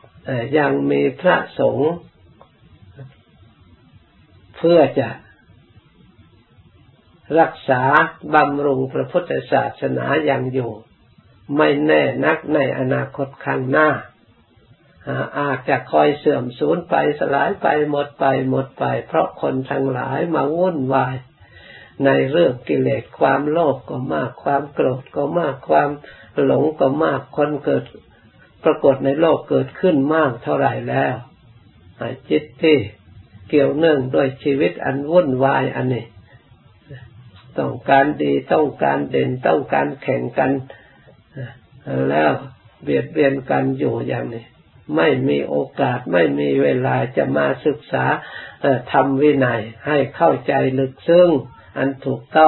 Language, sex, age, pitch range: Thai, male, 60-79, 110-145 Hz